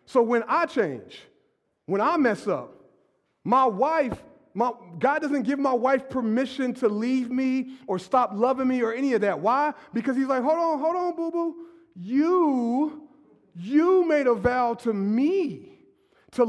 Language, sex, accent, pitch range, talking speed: English, male, American, 215-305 Hz, 165 wpm